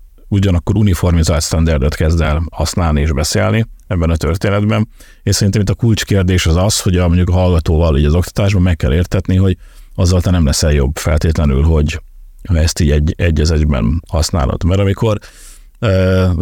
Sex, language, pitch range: male, Hungarian, 85-100 Hz